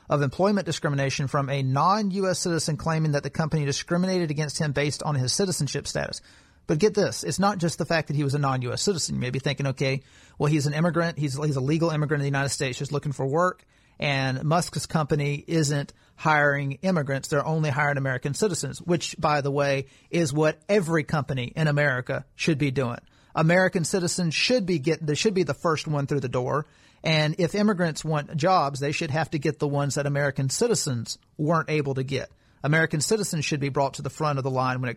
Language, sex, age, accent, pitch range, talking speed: English, male, 40-59, American, 140-170 Hz, 215 wpm